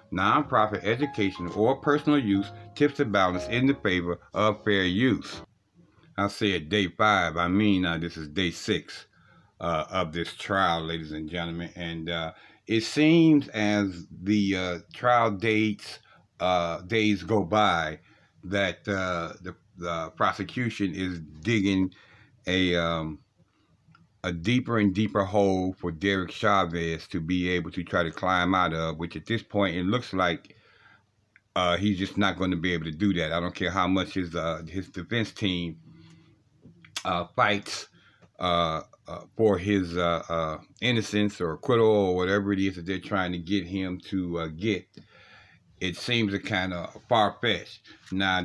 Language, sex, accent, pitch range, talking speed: English, male, American, 85-105 Hz, 160 wpm